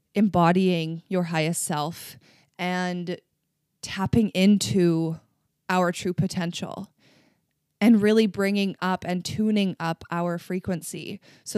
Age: 20-39